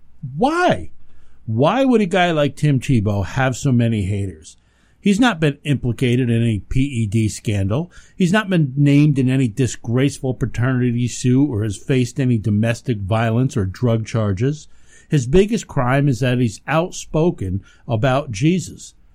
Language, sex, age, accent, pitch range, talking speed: English, male, 50-69, American, 115-165 Hz, 145 wpm